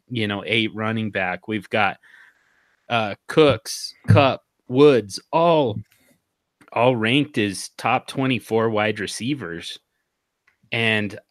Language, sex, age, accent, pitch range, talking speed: English, male, 30-49, American, 110-135 Hz, 105 wpm